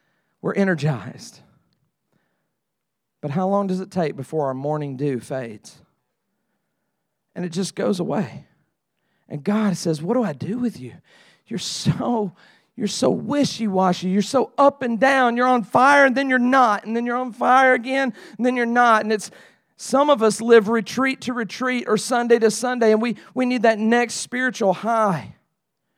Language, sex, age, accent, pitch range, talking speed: English, male, 40-59, American, 195-250 Hz, 175 wpm